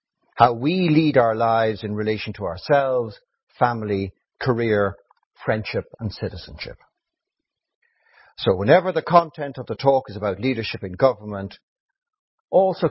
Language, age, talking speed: English, 60-79, 125 wpm